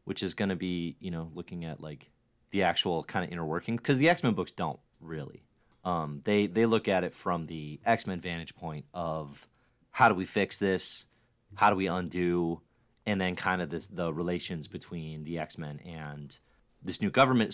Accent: American